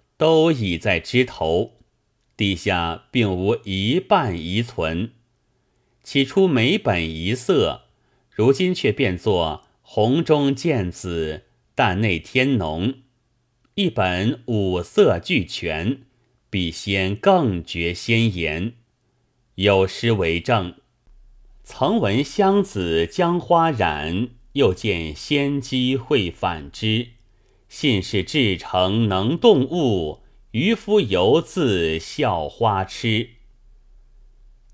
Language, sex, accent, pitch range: Chinese, male, native, 95-125 Hz